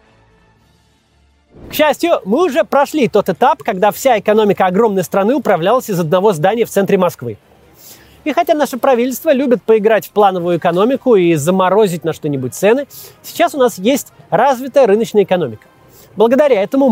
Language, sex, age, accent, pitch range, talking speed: Russian, male, 30-49, native, 175-275 Hz, 150 wpm